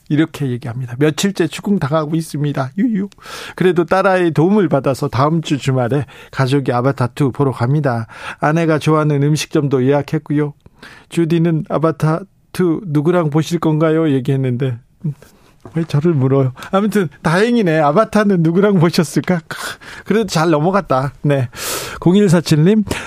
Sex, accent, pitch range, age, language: male, native, 135-170 Hz, 40-59, Korean